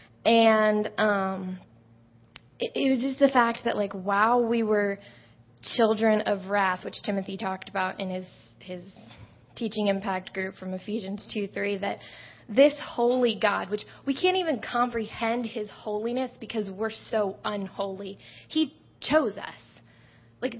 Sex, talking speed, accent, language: female, 145 wpm, American, English